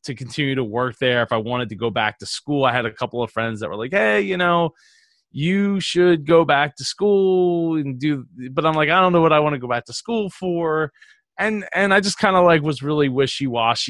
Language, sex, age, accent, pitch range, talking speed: English, male, 20-39, American, 120-165 Hz, 250 wpm